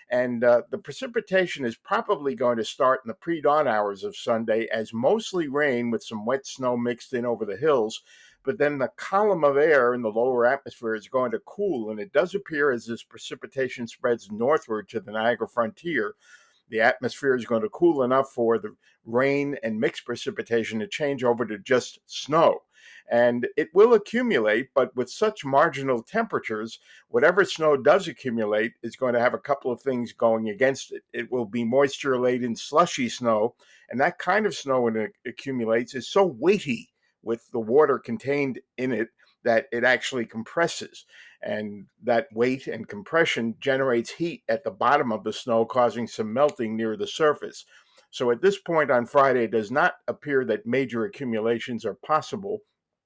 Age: 50-69